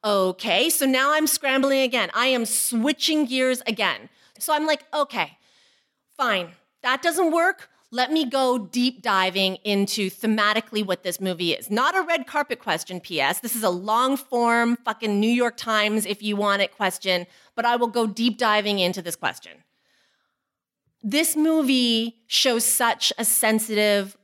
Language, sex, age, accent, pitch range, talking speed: English, female, 30-49, American, 195-255 Hz, 160 wpm